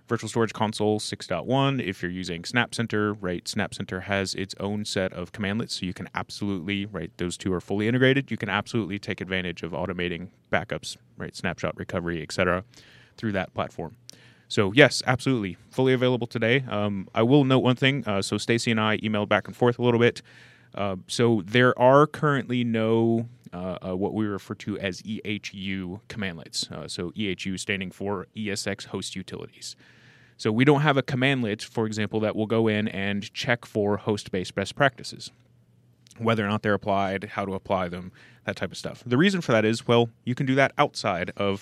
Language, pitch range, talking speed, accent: English, 95-120 Hz, 190 wpm, American